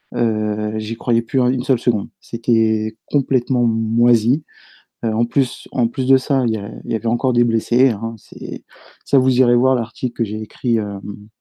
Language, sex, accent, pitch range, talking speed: French, male, French, 115-125 Hz, 190 wpm